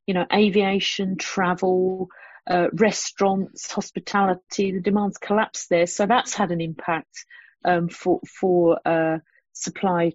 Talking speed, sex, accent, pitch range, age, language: 125 wpm, female, British, 190-230 Hz, 40-59, English